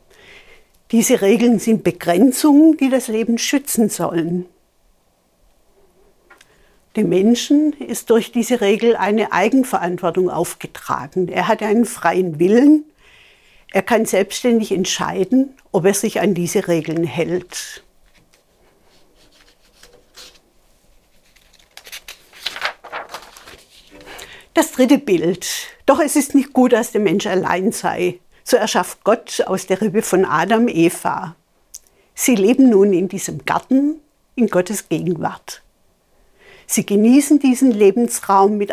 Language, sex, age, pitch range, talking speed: German, female, 50-69, 185-245 Hz, 110 wpm